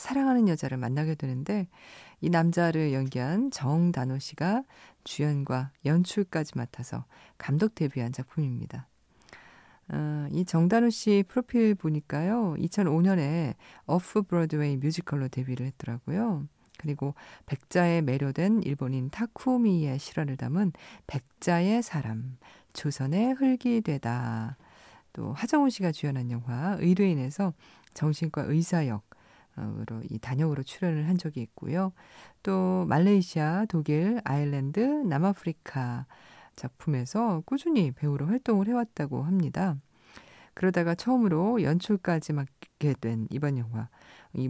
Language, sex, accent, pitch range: Korean, female, native, 135-195 Hz